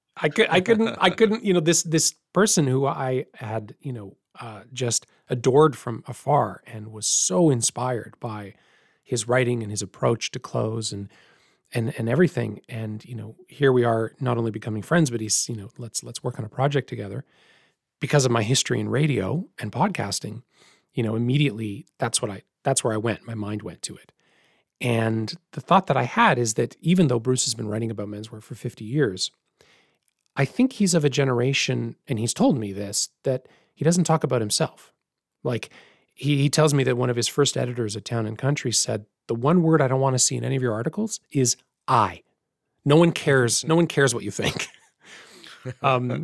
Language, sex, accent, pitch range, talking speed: English, male, American, 115-150 Hz, 205 wpm